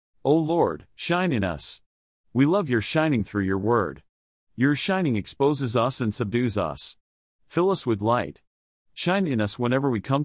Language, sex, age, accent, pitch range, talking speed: English, male, 40-59, American, 110-150 Hz, 170 wpm